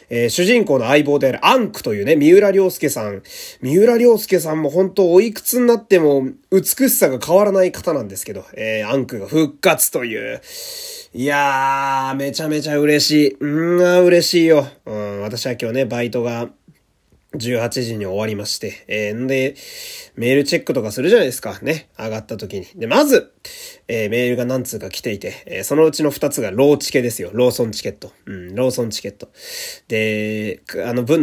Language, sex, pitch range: Japanese, male, 125-200 Hz